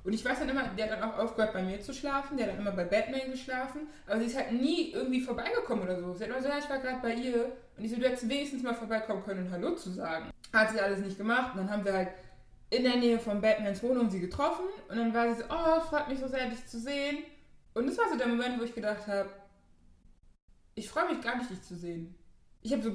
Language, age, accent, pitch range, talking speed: German, 20-39, German, 185-255 Hz, 270 wpm